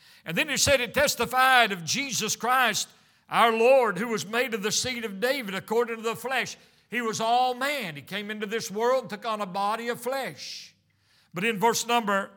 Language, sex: English, male